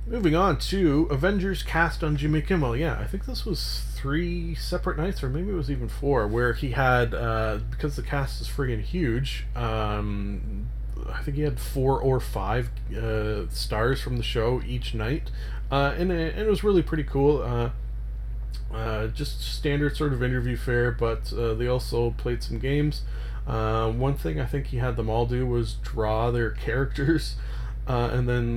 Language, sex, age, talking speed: English, male, 30-49, 185 wpm